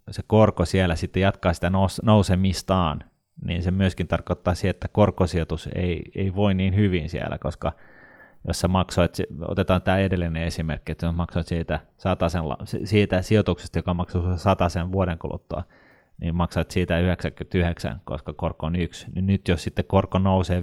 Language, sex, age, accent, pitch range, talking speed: Finnish, male, 30-49, native, 85-95 Hz, 155 wpm